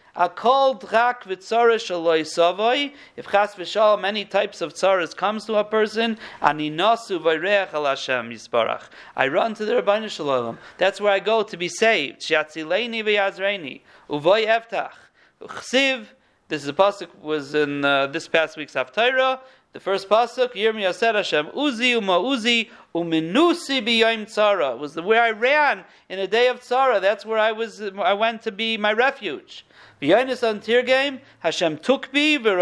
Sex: male